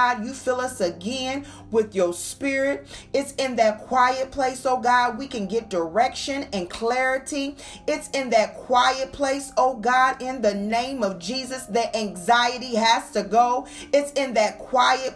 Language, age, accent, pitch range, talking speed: English, 40-59, American, 210-270 Hz, 160 wpm